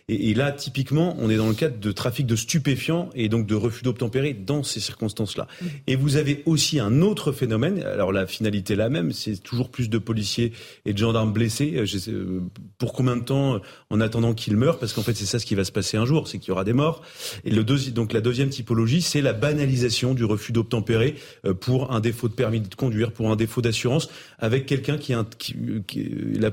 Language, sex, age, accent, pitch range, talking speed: French, male, 30-49, French, 110-135 Hz, 235 wpm